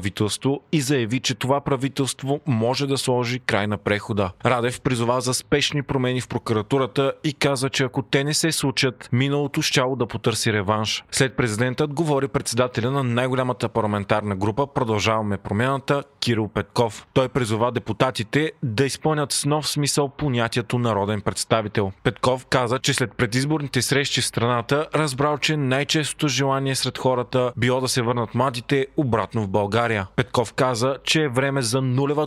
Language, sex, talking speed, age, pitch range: Bulgarian, male, 155 wpm, 30-49, 115-140 Hz